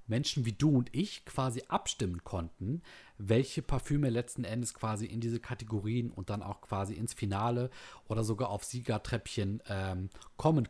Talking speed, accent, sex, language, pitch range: 155 wpm, German, male, German, 105-130 Hz